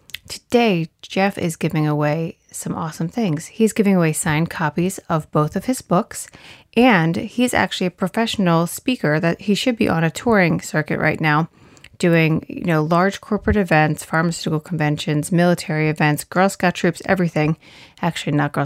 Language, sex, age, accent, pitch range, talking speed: English, female, 30-49, American, 155-185 Hz, 165 wpm